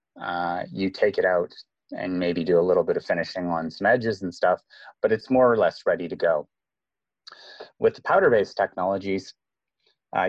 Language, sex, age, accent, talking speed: English, male, 30-49, American, 180 wpm